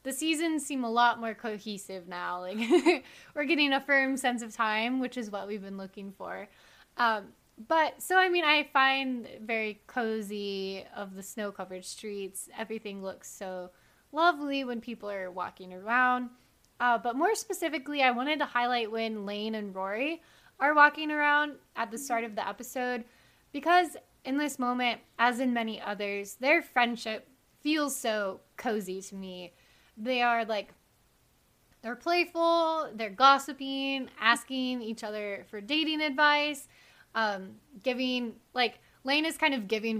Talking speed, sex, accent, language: 155 wpm, female, American, English